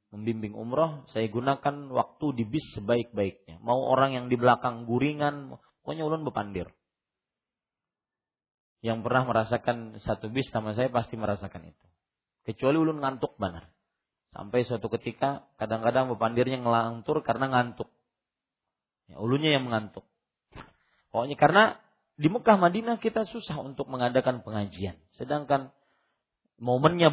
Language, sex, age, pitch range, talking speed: Malay, male, 40-59, 110-155 Hz, 120 wpm